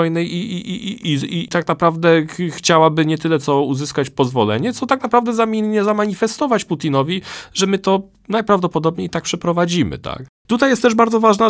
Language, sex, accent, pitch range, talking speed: Polish, male, native, 135-195 Hz, 175 wpm